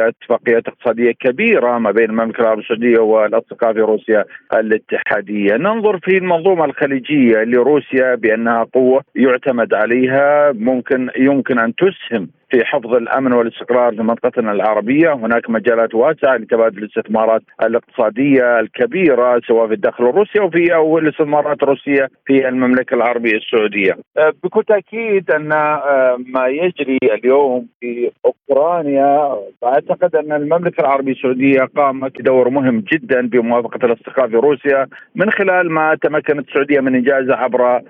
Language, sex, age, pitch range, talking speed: Arabic, male, 50-69, 120-155 Hz, 130 wpm